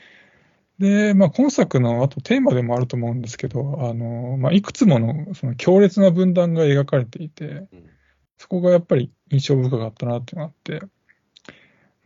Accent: native